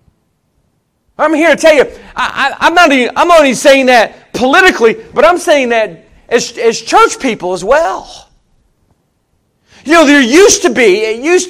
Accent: American